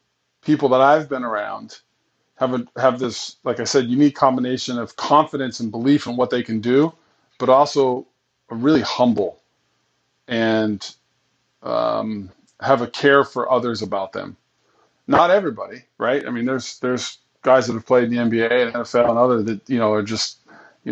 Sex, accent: male, American